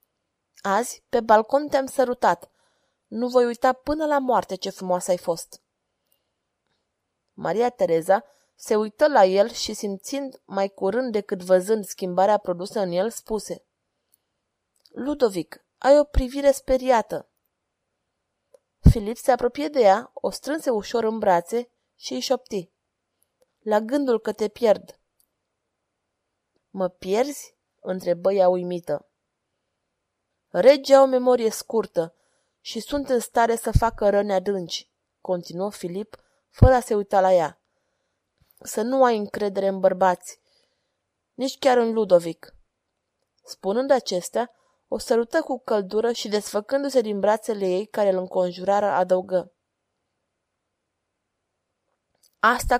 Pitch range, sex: 185-255 Hz, female